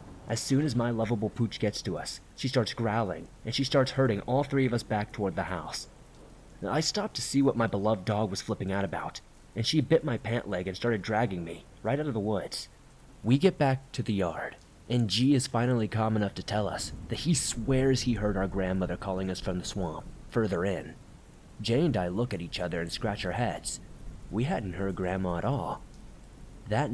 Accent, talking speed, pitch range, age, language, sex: American, 220 wpm, 95-125 Hz, 30-49, English, male